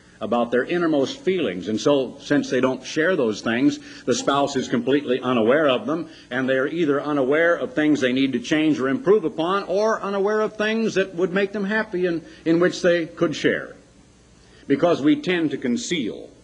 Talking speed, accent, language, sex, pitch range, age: 190 wpm, American, English, male, 125-200 Hz, 50-69